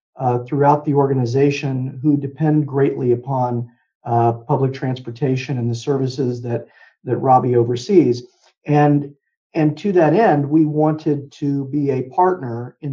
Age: 50-69